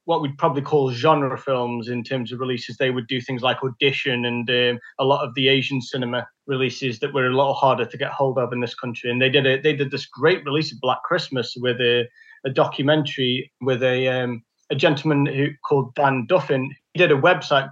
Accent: British